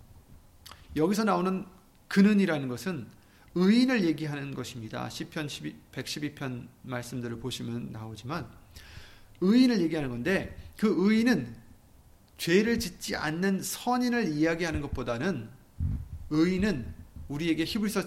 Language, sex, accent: Korean, male, native